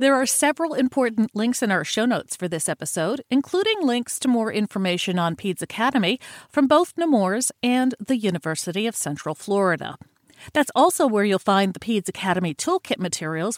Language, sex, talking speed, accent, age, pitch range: English, female, 170 wpm, American, 40-59, 175-265 Hz